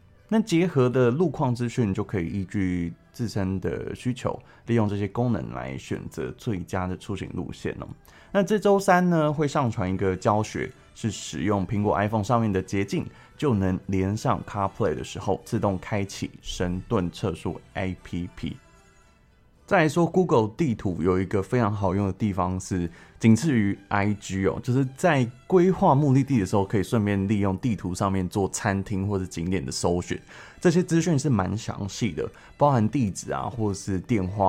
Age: 20-39